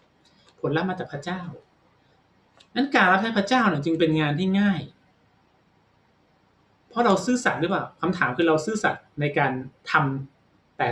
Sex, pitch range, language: male, 135-185 Hz, Thai